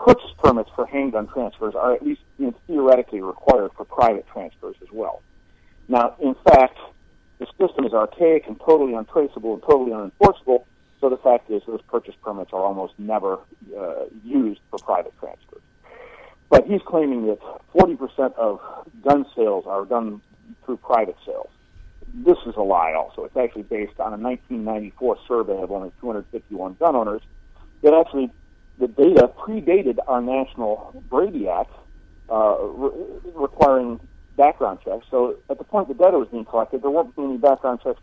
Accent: American